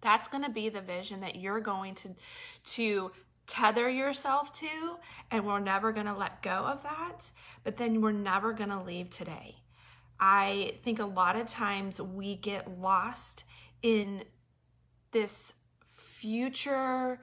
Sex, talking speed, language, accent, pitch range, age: female, 150 wpm, English, American, 190-230 Hz, 30-49